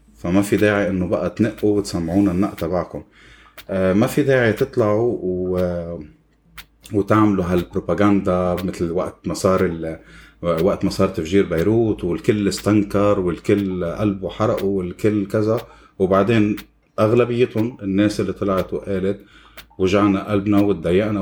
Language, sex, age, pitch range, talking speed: Arabic, male, 30-49, 95-110 Hz, 120 wpm